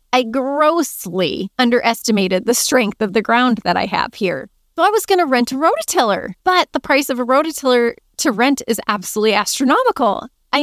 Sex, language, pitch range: female, English, 215-285 Hz